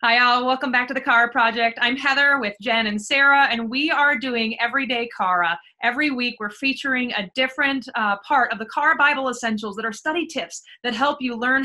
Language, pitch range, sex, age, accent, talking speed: English, 225-280 Hz, female, 20-39, American, 210 wpm